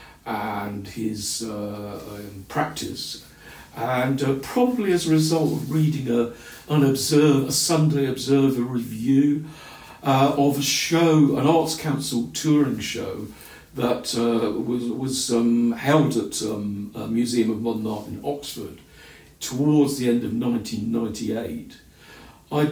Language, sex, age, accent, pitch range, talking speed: English, male, 50-69, British, 110-145 Hz, 125 wpm